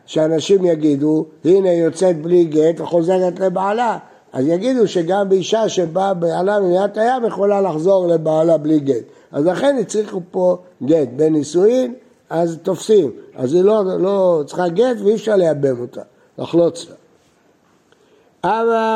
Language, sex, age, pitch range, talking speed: Hebrew, male, 60-79, 165-215 Hz, 140 wpm